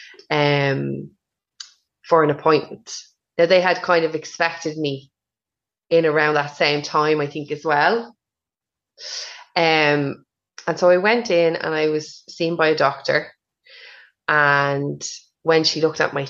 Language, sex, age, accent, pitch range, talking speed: English, female, 20-39, Irish, 145-175 Hz, 145 wpm